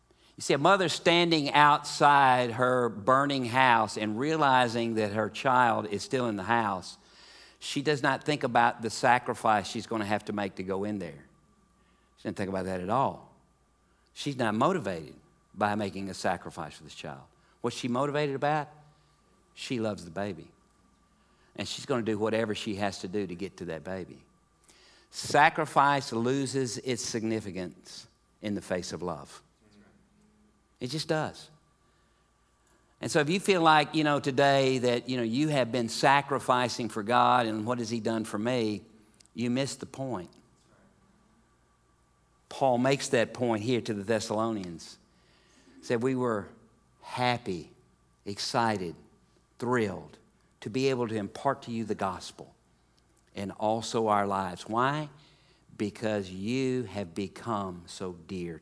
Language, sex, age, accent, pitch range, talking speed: English, male, 50-69, American, 105-135 Hz, 155 wpm